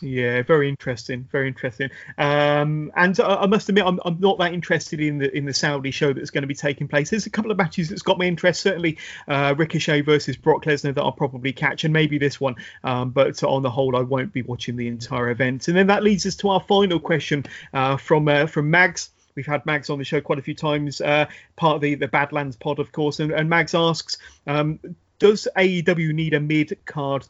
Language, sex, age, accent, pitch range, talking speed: English, male, 30-49, British, 140-170 Hz, 235 wpm